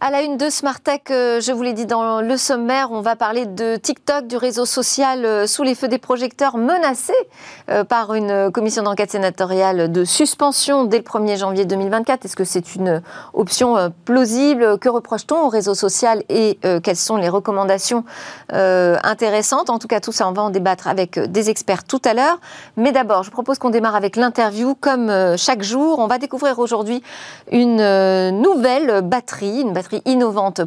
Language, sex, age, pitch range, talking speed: French, female, 40-59, 200-270 Hz, 180 wpm